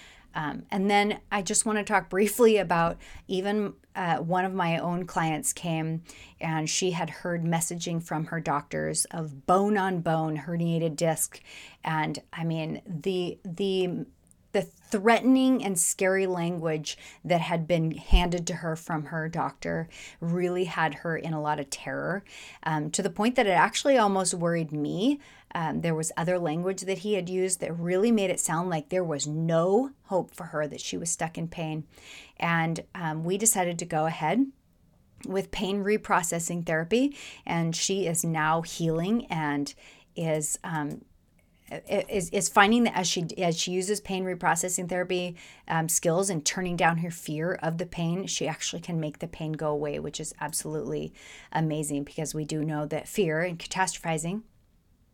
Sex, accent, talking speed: female, American, 170 wpm